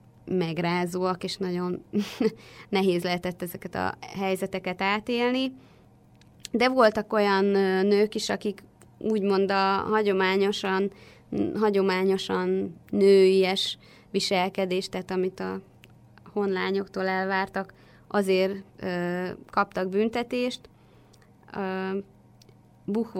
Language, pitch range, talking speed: Hungarian, 180-205 Hz, 80 wpm